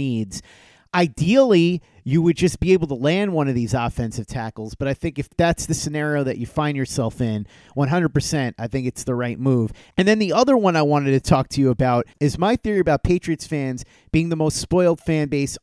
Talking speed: 220 wpm